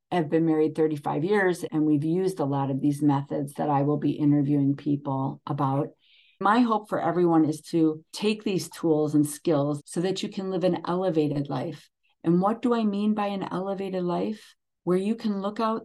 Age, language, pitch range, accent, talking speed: 40-59, English, 150-180 Hz, American, 200 wpm